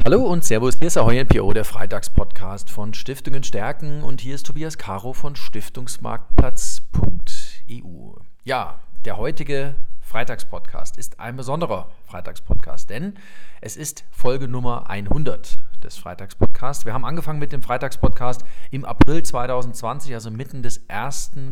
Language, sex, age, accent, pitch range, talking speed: German, male, 40-59, German, 110-135 Hz, 135 wpm